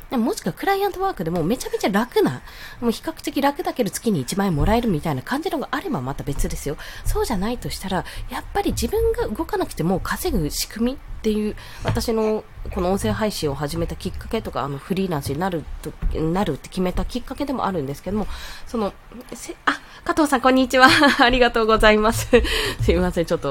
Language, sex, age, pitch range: Japanese, female, 20-39, 165-275 Hz